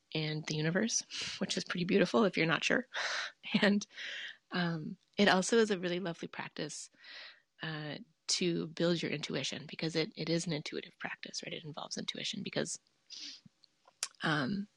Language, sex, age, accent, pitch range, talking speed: English, female, 20-39, American, 160-205 Hz, 155 wpm